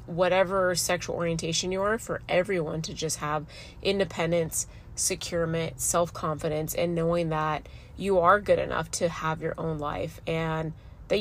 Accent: American